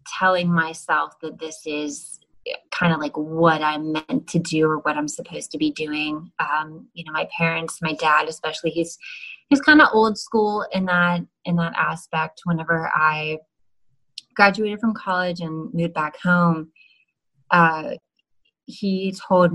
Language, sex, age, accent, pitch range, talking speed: English, female, 20-39, American, 155-180 Hz, 155 wpm